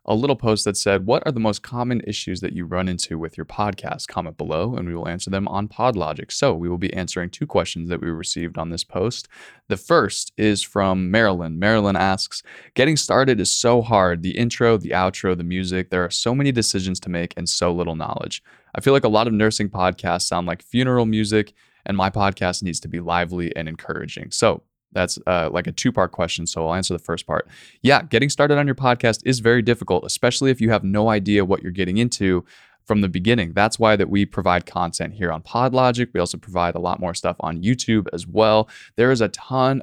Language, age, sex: English, 20-39, male